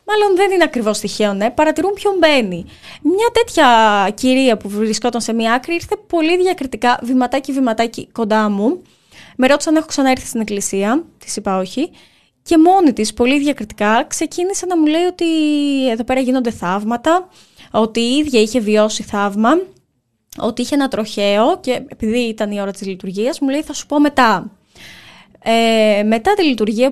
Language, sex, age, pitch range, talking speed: Greek, female, 20-39, 210-300 Hz, 170 wpm